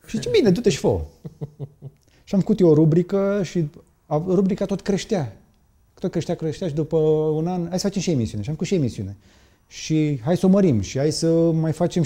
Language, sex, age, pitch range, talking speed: Romanian, male, 30-49, 110-145 Hz, 215 wpm